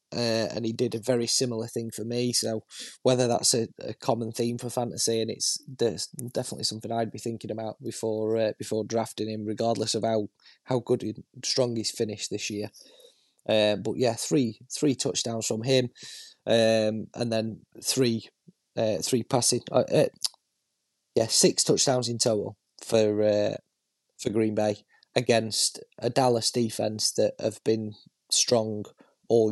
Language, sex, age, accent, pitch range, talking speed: English, male, 20-39, British, 110-130 Hz, 160 wpm